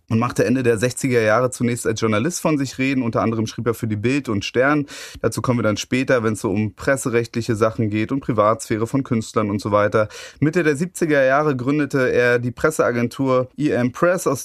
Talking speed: 210 wpm